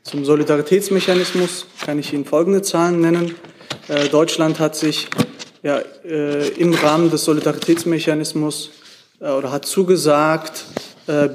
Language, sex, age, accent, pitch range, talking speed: German, male, 30-49, German, 140-170 Hz, 120 wpm